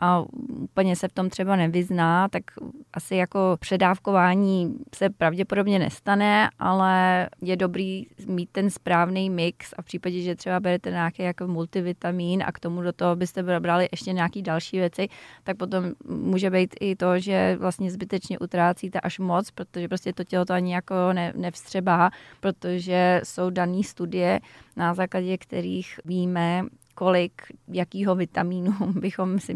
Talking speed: 150 wpm